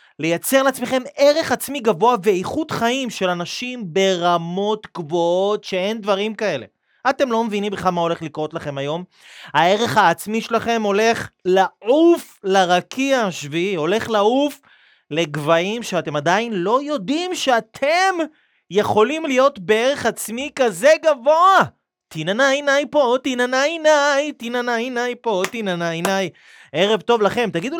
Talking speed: 125 wpm